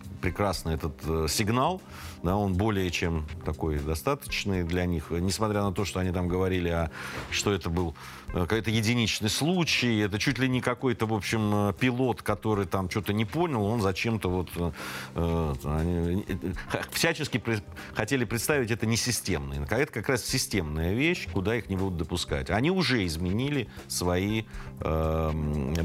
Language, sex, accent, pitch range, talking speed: Russian, male, native, 80-110 Hz, 140 wpm